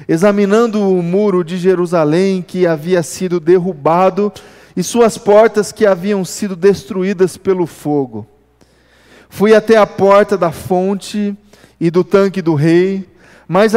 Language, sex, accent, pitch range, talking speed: Portuguese, male, Brazilian, 175-210 Hz, 130 wpm